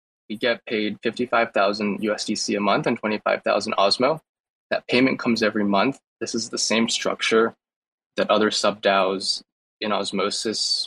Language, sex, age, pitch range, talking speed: English, male, 20-39, 100-115 Hz, 155 wpm